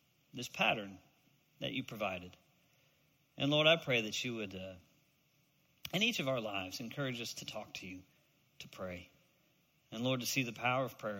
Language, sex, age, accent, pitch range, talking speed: English, male, 40-59, American, 135-185 Hz, 180 wpm